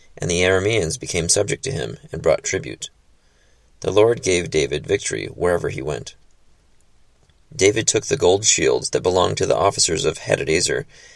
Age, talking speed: 30-49, 160 wpm